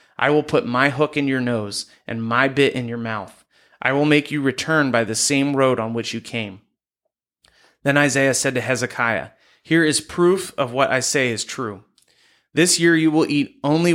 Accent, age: American, 30-49